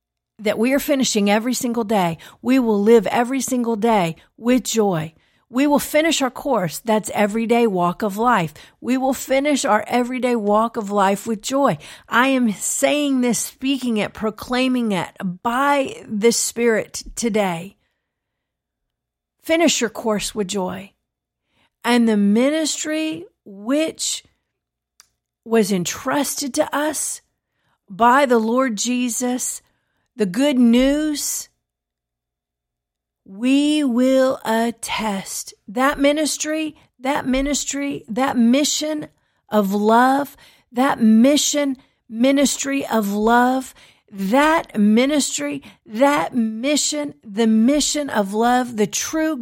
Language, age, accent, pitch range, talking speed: English, 50-69, American, 215-275 Hz, 115 wpm